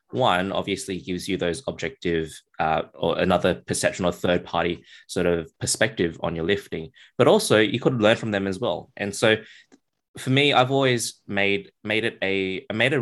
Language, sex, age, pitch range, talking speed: English, male, 20-39, 90-110 Hz, 185 wpm